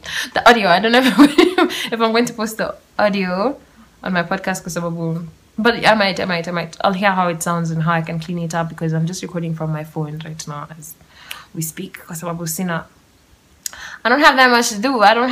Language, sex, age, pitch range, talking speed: English, female, 10-29, 170-210 Hz, 225 wpm